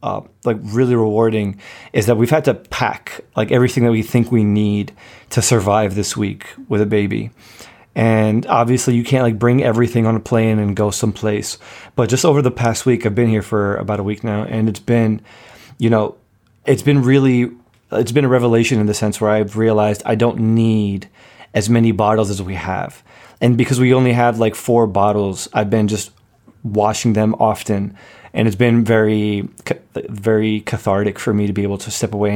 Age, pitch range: 20-39, 105-120 Hz